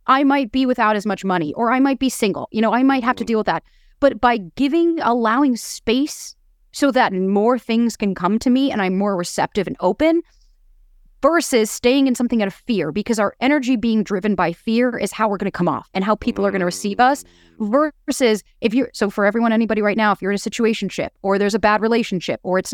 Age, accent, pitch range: 30-49, American, 200-255 Hz